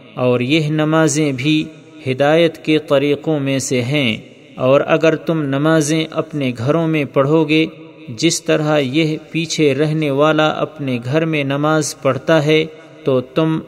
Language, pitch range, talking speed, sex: Urdu, 140-160 Hz, 145 wpm, male